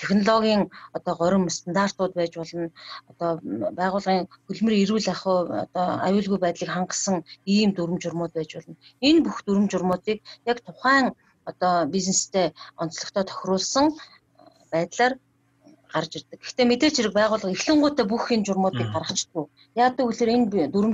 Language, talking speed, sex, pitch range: Russian, 105 wpm, female, 170-230 Hz